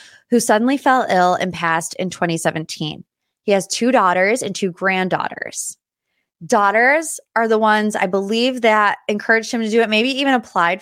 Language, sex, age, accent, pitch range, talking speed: English, female, 20-39, American, 180-230 Hz, 165 wpm